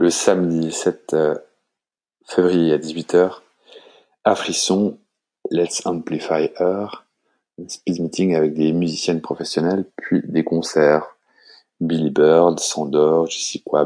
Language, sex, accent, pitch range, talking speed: English, male, French, 75-90 Hz, 115 wpm